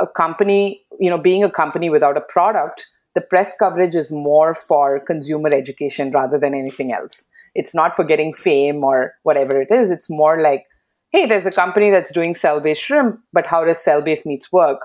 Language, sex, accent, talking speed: English, female, Indian, 195 wpm